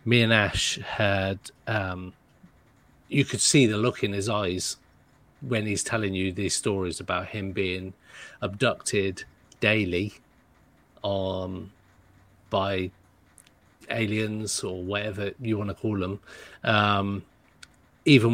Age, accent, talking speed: 30-49, British, 120 wpm